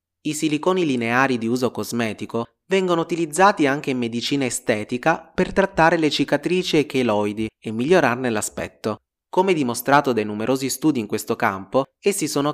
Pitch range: 115-160 Hz